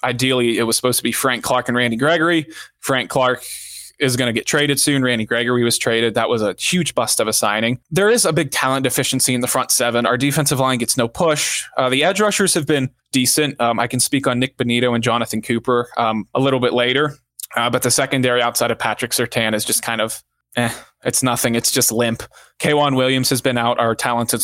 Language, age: English, 20-39